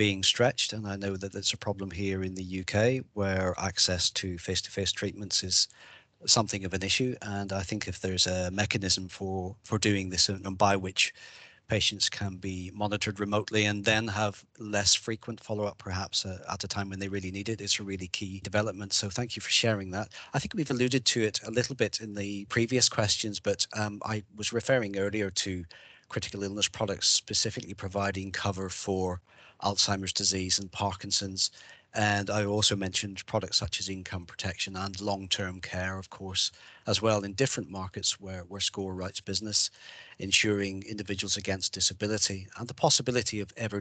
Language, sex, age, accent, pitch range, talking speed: English, male, 40-59, British, 95-110 Hz, 185 wpm